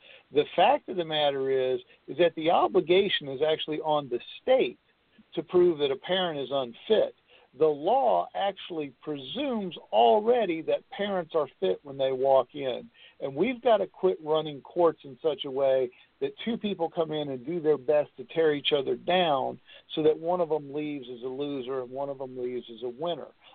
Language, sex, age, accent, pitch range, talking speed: English, male, 50-69, American, 135-190 Hz, 195 wpm